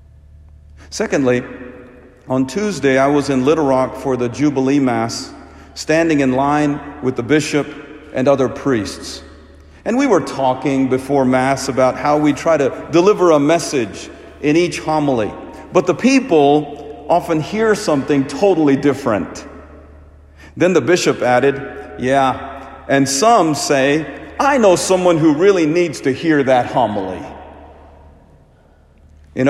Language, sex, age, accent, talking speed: English, male, 50-69, American, 130 wpm